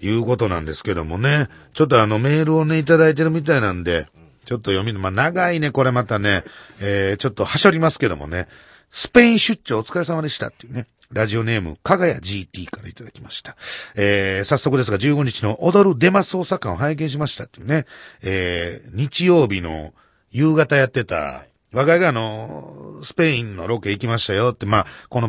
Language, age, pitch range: Japanese, 40-59, 100-165 Hz